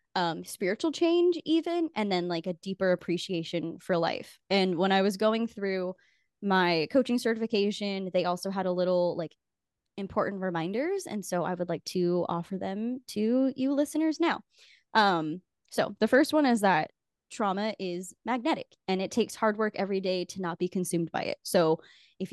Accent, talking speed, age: American, 175 wpm, 10-29